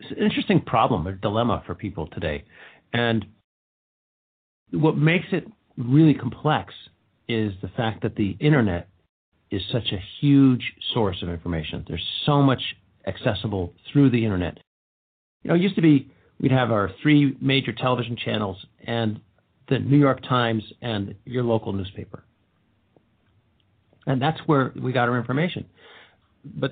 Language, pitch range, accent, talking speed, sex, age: English, 100-135 Hz, American, 145 wpm, male, 50-69